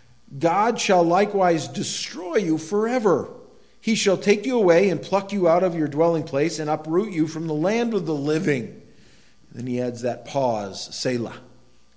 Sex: male